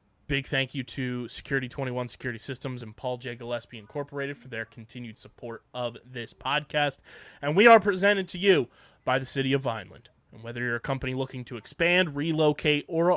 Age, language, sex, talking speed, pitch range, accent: 20-39, English, male, 185 wpm, 125-155 Hz, American